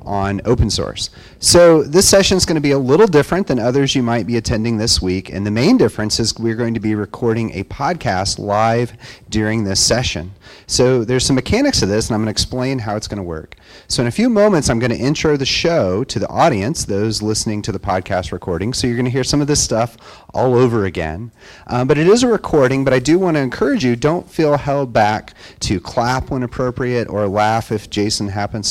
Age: 30-49